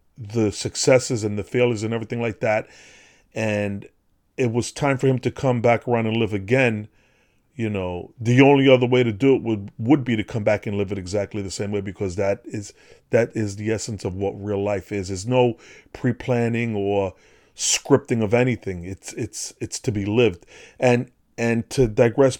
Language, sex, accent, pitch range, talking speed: English, male, American, 105-125 Hz, 195 wpm